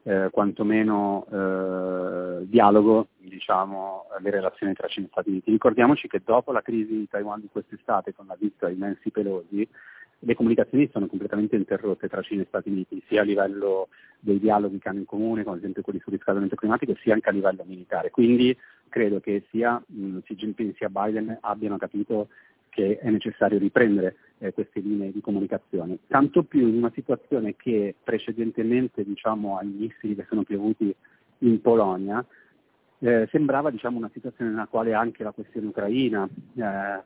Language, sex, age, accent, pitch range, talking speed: Italian, male, 30-49, native, 100-115 Hz, 170 wpm